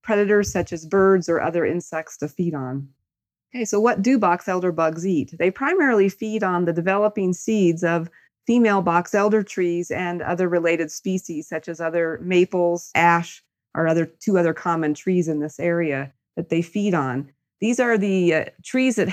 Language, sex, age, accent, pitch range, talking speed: English, female, 40-59, American, 165-195 Hz, 180 wpm